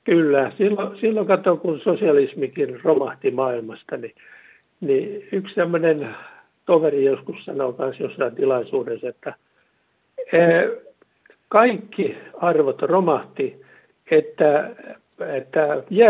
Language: Finnish